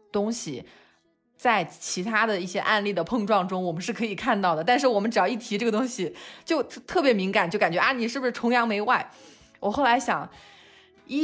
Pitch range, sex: 175-230 Hz, female